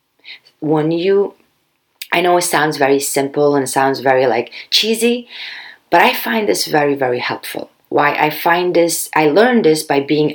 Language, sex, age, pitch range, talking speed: English, female, 30-49, 135-165 Hz, 175 wpm